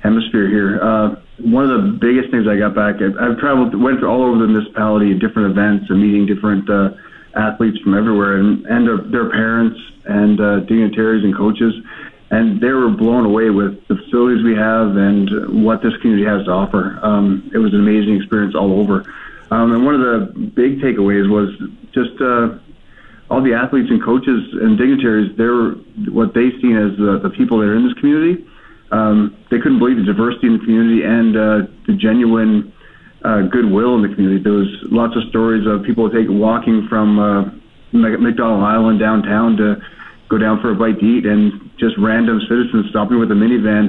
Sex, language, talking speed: male, English, 195 wpm